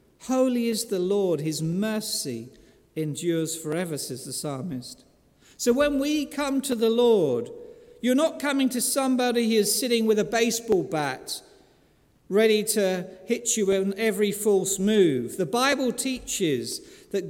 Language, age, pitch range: English, 50-69, 175-240 Hz